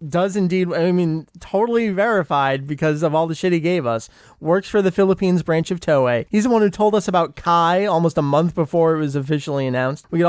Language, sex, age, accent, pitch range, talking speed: English, male, 30-49, American, 140-185 Hz, 225 wpm